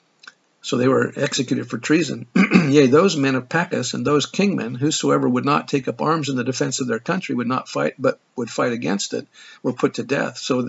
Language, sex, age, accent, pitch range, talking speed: English, male, 50-69, American, 125-145 Hz, 220 wpm